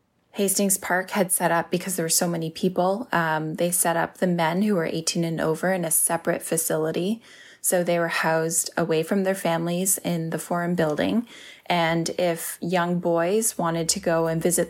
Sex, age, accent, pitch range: female, 20-39, American, 165-190 Hz